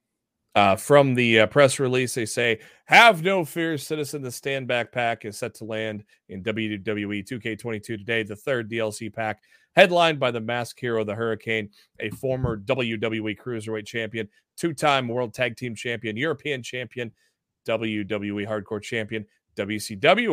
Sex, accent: male, American